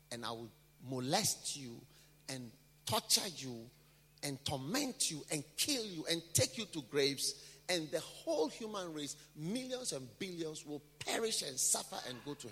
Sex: male